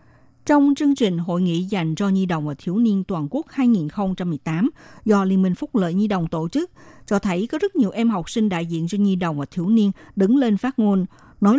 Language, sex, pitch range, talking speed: Vietnamese, female, 175-245 Hz, 235 wpm